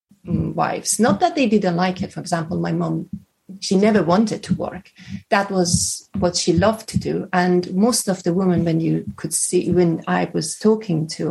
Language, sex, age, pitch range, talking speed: English, female, 30-49, 175-225 Hz, 195 wpm